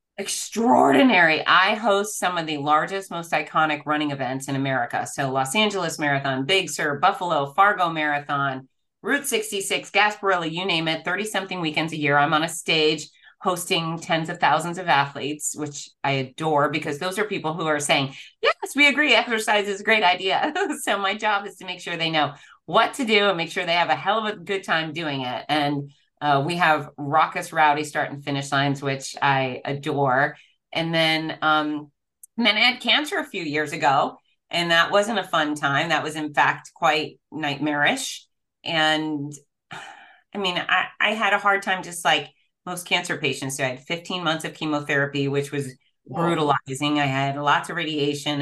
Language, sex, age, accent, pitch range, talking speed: English, female, 30-49, American, 145-180 Hz, 190 wpm